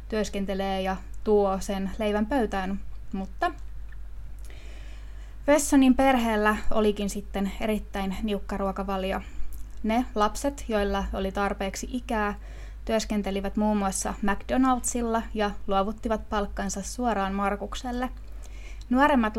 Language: Finnish